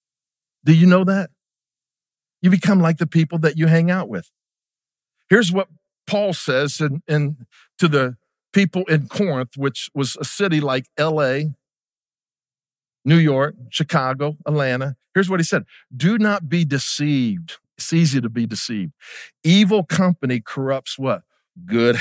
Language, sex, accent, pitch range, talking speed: English, male, American, 130-170 Hz, 140 wpm